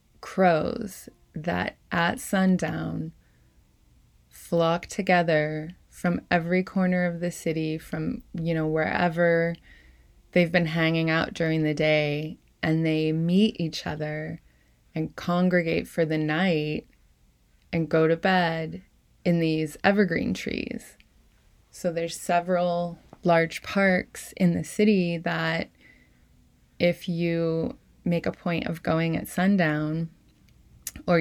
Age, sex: 20-39, female